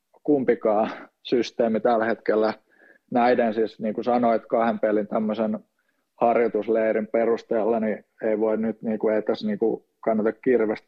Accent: native